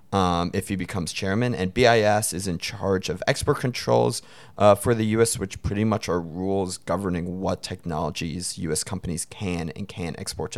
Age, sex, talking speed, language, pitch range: 30-49, male, 180 wpm, English, 90-115 Hz